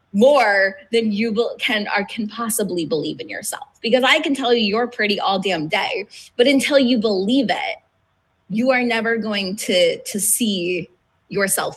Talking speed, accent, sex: 170 wpm, American, female